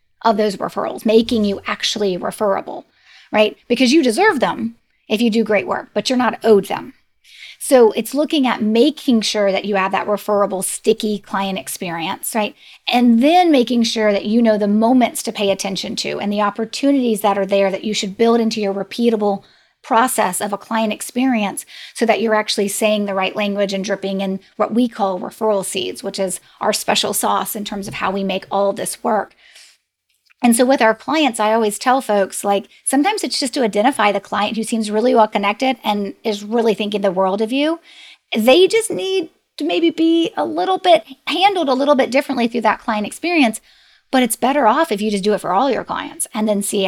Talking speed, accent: 205 wpm, American